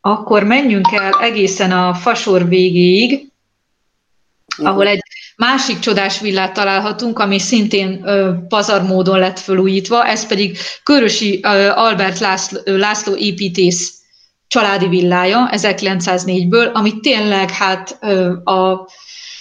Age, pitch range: 30-49, 185-210 Hz